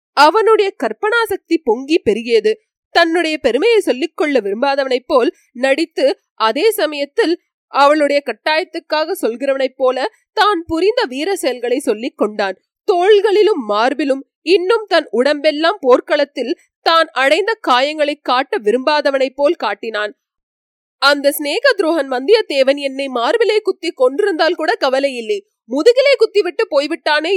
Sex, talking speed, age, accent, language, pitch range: female, 110 wpm, 30-49, native, Tamil, 275-410 Hz